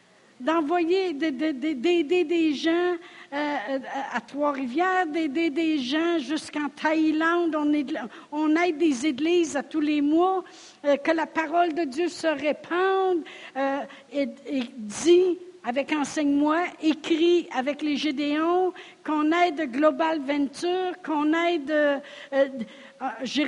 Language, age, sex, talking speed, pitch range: French, 60-79, female, 105 wpm, 270-335 Hz